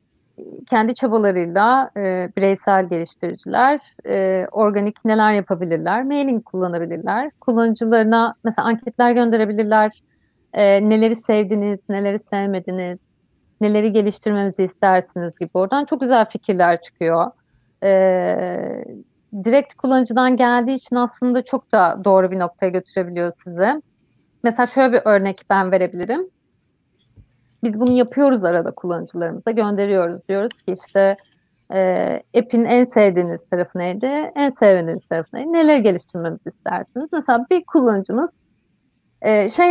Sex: female